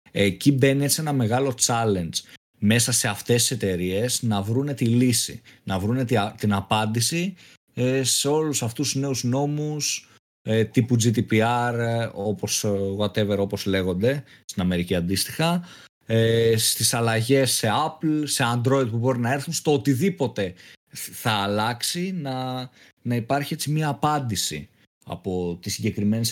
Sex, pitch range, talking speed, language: male, 110-140 Hz, 130 wpm, Greek